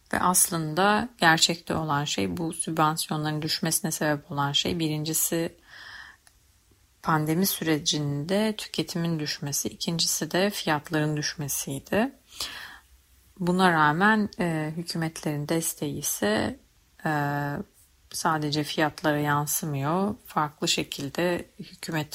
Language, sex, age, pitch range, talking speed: Turkish, female, 40-59, 150-185 Hz, 90 wpm